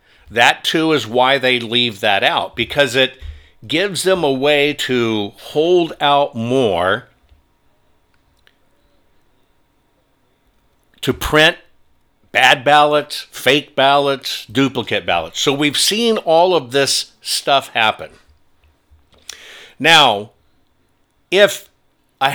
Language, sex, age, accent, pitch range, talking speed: English, male, 60-79, American, 110-155 Hz, 100 wpm